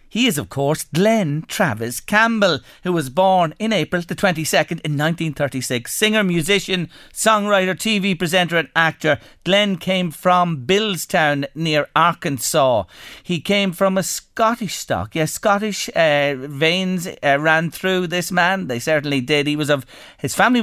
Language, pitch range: English, 135-195 Hz